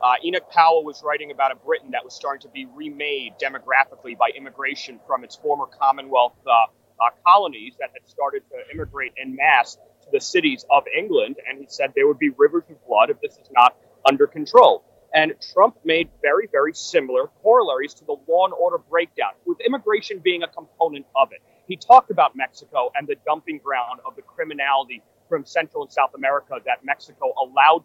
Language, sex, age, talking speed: English, male, 30-49, 195 wpm